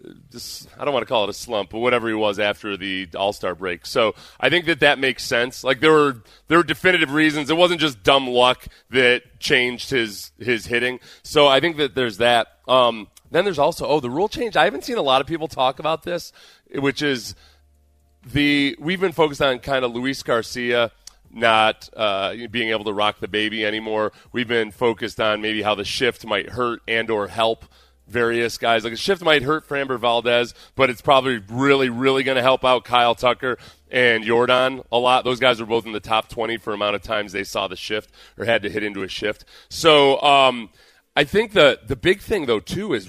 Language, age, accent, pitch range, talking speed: English, 30-49, American, 110-140 Hz, 215 wpm